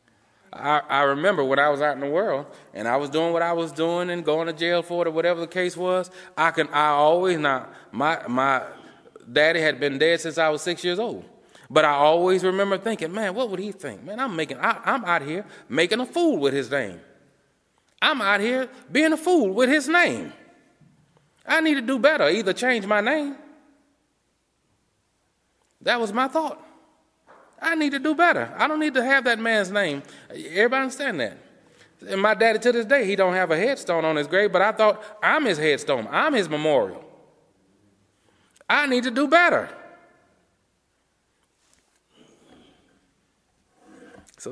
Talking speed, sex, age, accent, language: 180 wpm, male, 30-49, American, English